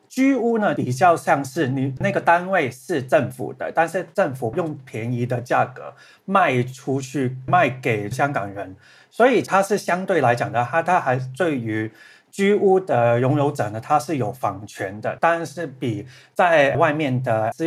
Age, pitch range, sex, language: 30-49, 120-165 Hz, male, Chinese